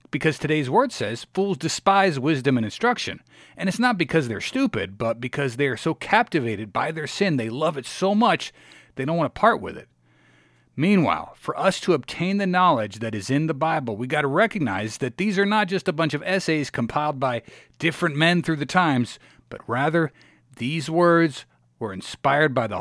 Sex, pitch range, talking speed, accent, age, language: male, 120-170 Hz, 200 wpm, American, 40-59, English